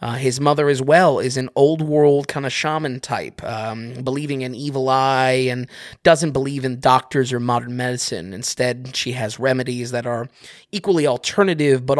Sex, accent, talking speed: male, American, 170 wpm